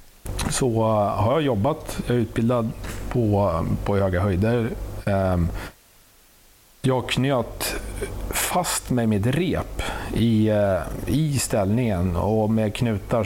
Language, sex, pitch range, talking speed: Swedish, male, 95-120 Hz, 105 wpm